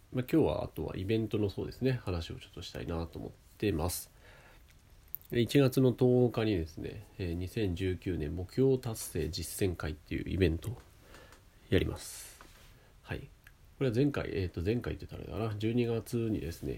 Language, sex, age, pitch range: Japanese, male, 40-59, 80-110 Hz